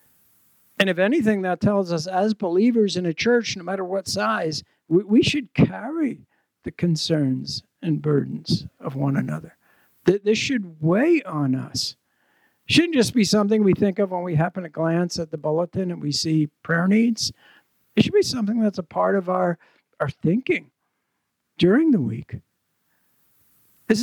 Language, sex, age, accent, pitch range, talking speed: English, male, 60-79, American, 155-215 Hz, 165 wpm